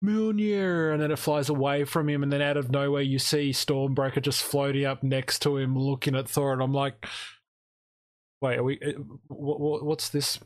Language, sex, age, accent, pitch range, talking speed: English, male, 20-39, Australian, 120-155 Hz, 190 wpm